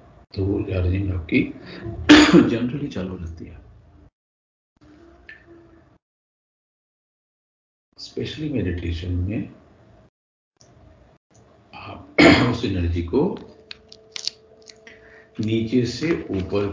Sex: male